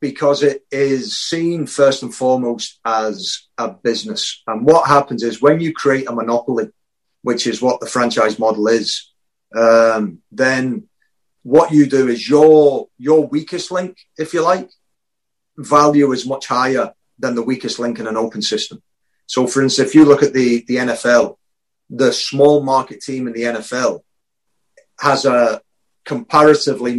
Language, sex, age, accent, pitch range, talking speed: English, male, 30-49, British, 115-140 Hz, 160 wpm